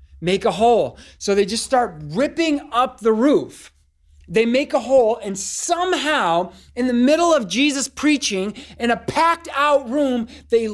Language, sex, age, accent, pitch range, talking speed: English, male, 30-49, American, 210-280 Hz, 160 wpm